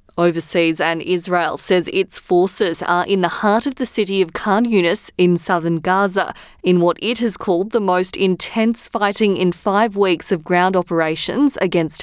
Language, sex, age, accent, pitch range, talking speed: English, female, 20-39, Australian, 170-200 Hz, 175 wpm